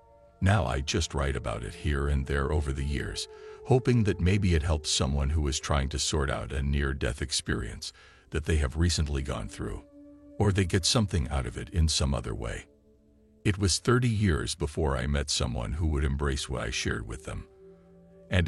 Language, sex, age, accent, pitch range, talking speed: English, male, 50-69, American, 70-105 Hz, 200 wpm